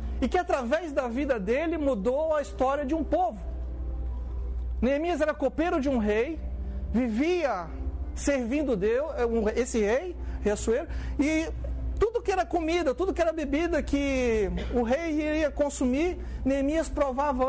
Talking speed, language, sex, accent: 140 wpm, Portuguese, male, Brazilian